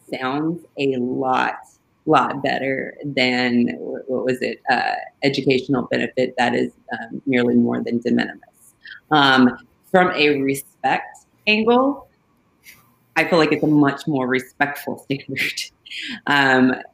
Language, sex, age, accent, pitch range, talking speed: English, female, 30-49, American, 130-160 Hz, 125 wpm